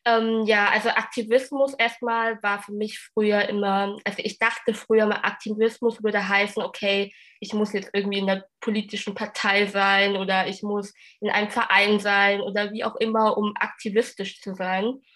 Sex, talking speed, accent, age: female, 170 wpm, German, 20-39